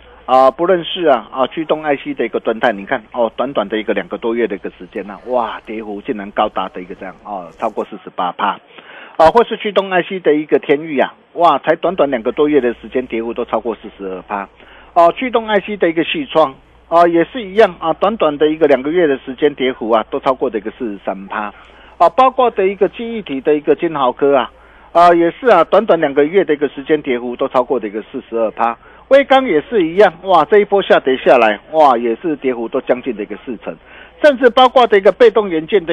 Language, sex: Chinese, male